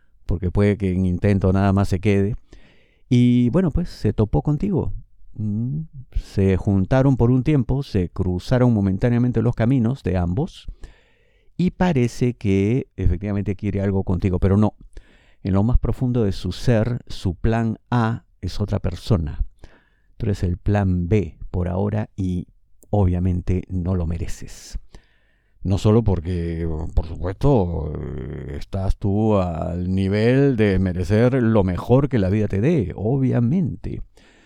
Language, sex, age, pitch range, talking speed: Spanish, male, 50-69, 95-120 Hz, 140 wpm